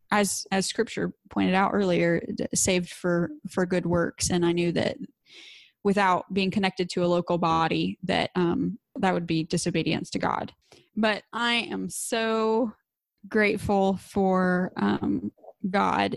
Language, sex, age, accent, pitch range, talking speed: English, female, 20-39, American, 170-195 Hz, 140 wpm